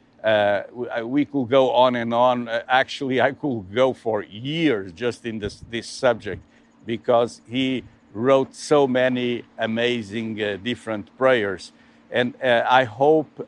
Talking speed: 140 wpm